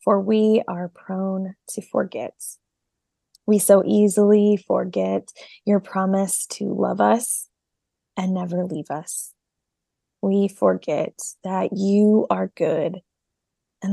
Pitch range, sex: 180-200 Hz, female